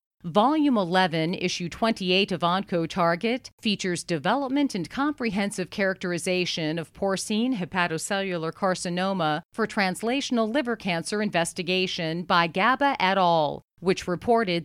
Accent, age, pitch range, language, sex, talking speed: American, 40-59, 175-215 Hz, English, female, 105 wpm